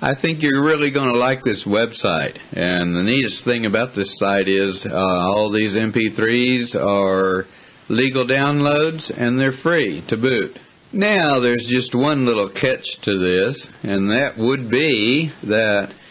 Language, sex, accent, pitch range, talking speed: English, male, American, 100-125 Hz, 155 wpm